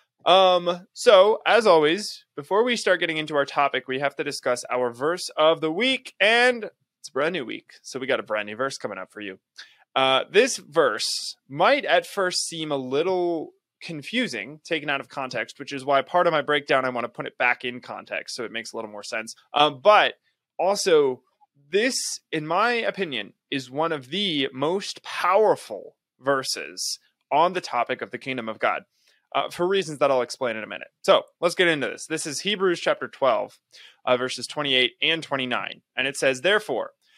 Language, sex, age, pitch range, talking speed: English, male, 20-39, 130-185 Hz, 195 wpm